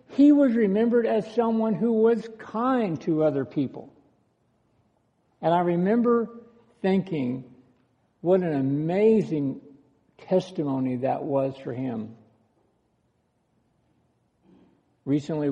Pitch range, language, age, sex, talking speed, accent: 125-185 Hz, English, 60-79, male, 95 wpm, American